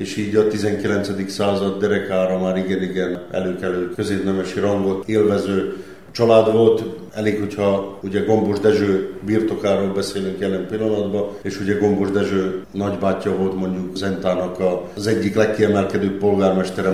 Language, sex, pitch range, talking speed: Hungarian, male, 95-105 Hz, 125 wpm